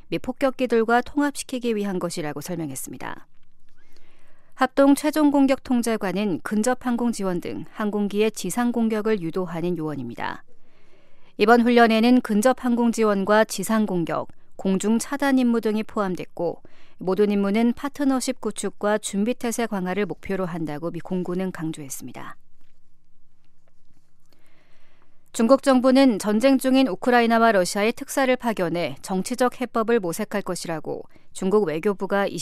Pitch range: 180-240 Hz